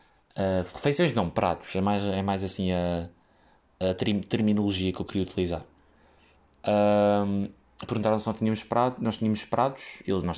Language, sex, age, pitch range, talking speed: Portuguese, male, 20-39, 95-120 Hz, 115 wpm